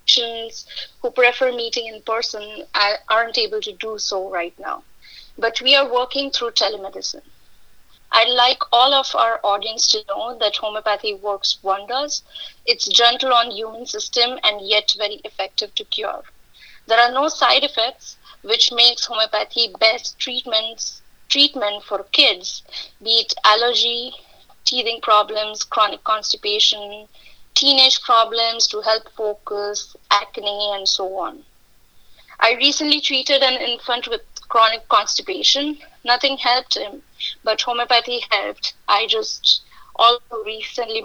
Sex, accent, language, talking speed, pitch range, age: female, Indian, English, 130 wpm, 210-255 Hz, 20-39